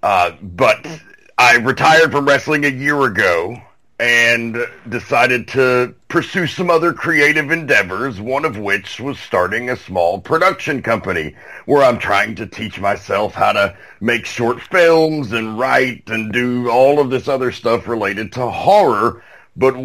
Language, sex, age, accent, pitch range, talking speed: English, male, 40-59, American, 115-140 Hz, 150 wpm